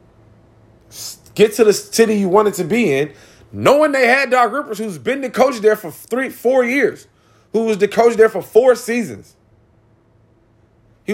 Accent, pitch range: American, 120-200 Hz